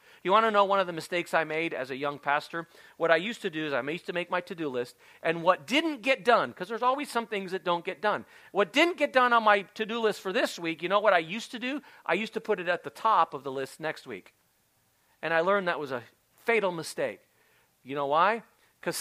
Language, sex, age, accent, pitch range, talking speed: English, male, 40-59, American, 160-220 Hz, 265 wpm